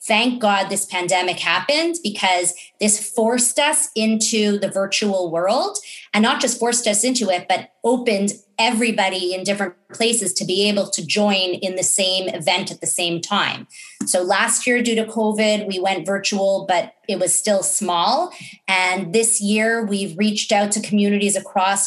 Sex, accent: female, American